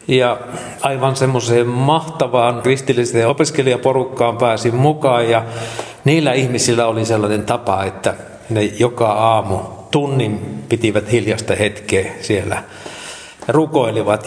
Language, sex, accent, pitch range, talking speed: Finnish, male, native, 110-145 Hz, 100 wpm